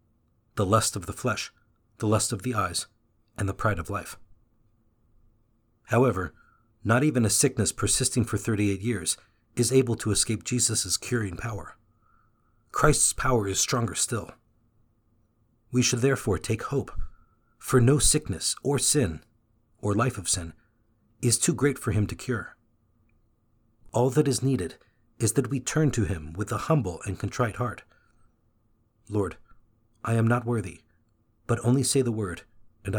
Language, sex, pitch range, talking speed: English, male, 105-120 Hz, 155 wpm